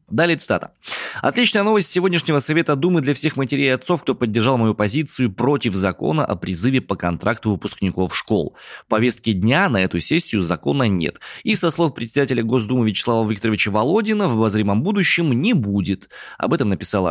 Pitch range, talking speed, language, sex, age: 95-130 Hz, 170 wpm, Russian, male, 20-39